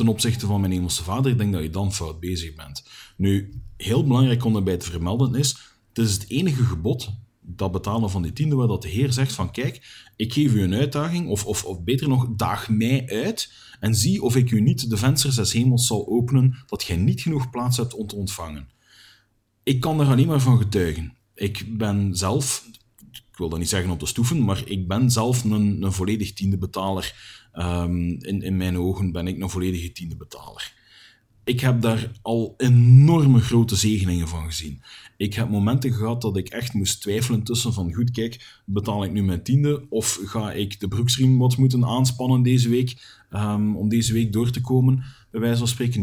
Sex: male